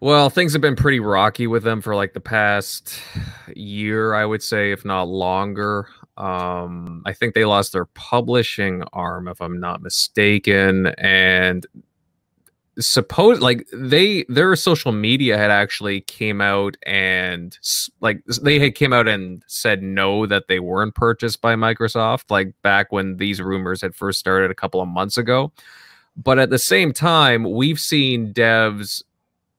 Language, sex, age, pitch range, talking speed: English, male, 20-39, 95-120 Hz, 160 wpm